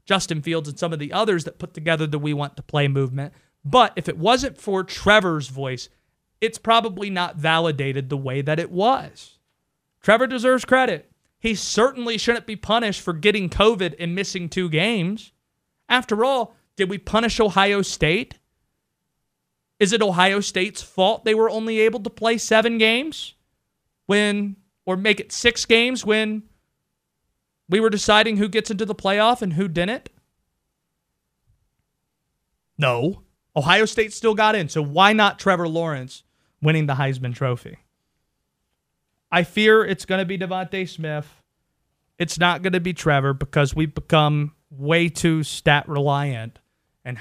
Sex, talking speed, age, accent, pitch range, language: male, 155 wpm, 30-49, American, 150-215 Hz, English